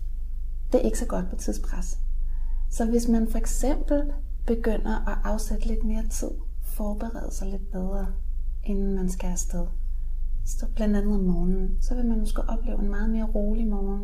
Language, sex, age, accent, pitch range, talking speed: English, female, 30-49, Danish, 210-250 Hz, 175 wpm